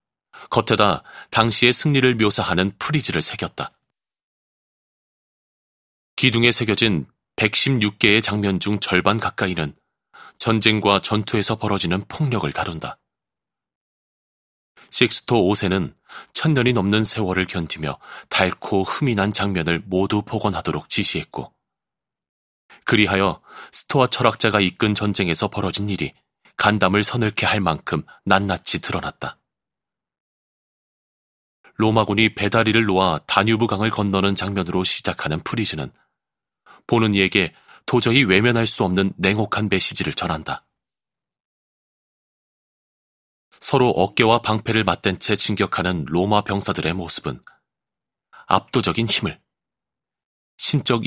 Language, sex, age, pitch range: Korean, male, 30-49, 95-110 Hz